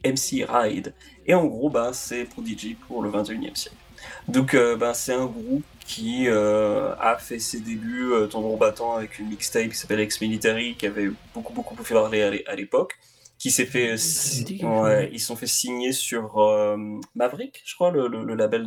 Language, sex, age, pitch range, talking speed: French, male, 20-39, 110-145 Hz, 205 wpm